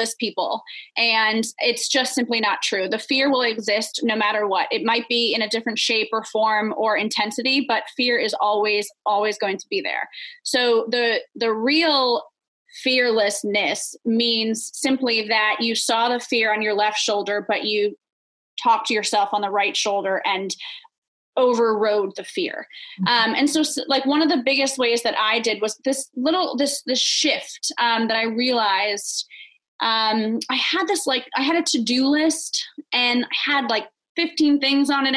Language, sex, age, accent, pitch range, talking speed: English, female, 20-39, American, 215-275 Hz, 175 wpm